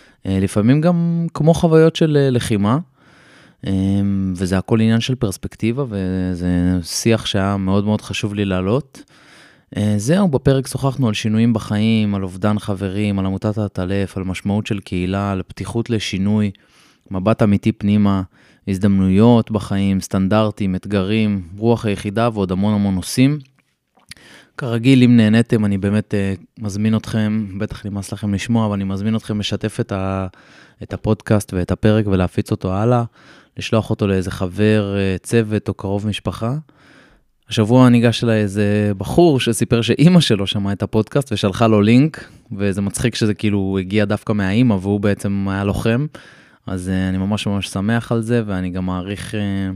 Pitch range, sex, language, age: 100-115 Hz, male, Hebrew, 20-39